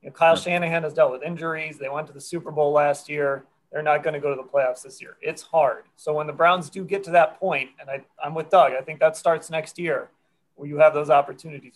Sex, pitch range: male, 150-190 Hz